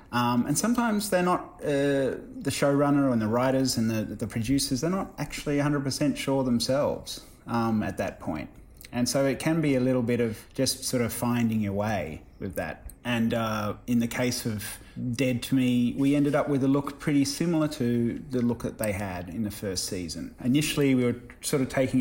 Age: 30-49